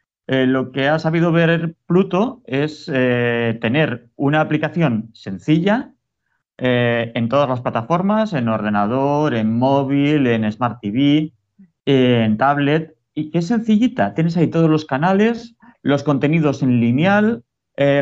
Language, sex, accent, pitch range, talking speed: Spanish, male, Spanish, 115-155 Hz, 140 wpm